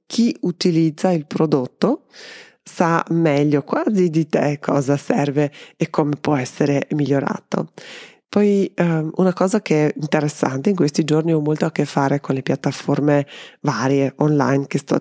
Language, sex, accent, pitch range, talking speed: Italian, female, native, 140-165 Hz, 150 wpm